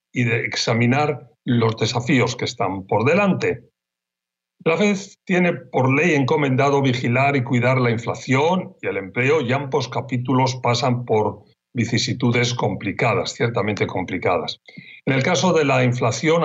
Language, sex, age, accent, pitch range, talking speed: Spanish, male, 40-59, Spanish, 115-135 Hz, 140 wpm